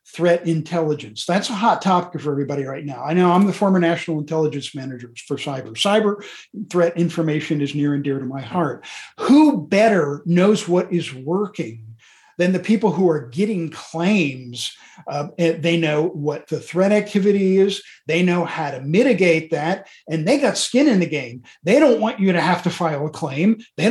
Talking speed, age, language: 190 wpm, 50-69, English